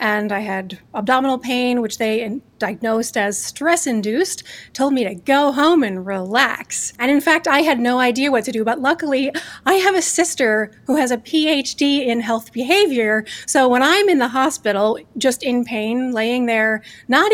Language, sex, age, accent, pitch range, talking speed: English, female, 30-49, American, 225-295 Hz, 185 wpm